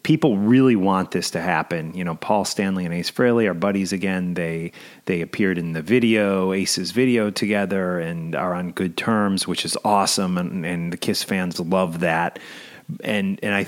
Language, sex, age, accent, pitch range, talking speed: English, male, 30-49, American, 90-115 Hz, 190 wpm